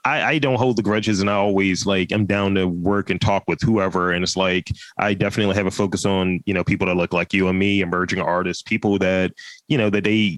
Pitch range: 95-120 Hz